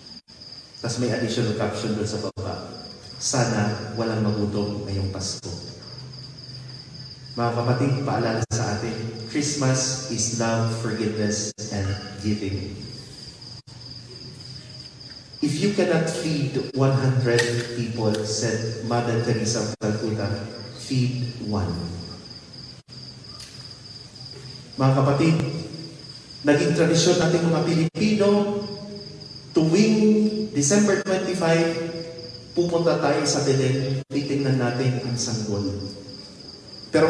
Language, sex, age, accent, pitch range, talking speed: English, male, 40-59, Filipino, 120-155 Hz, 85 wpm